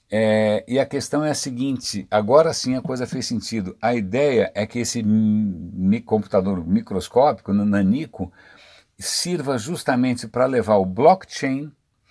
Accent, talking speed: Brazilian, 130 wpm